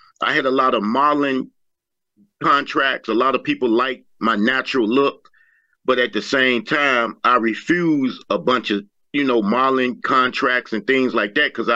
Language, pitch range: English, 115-135 Hz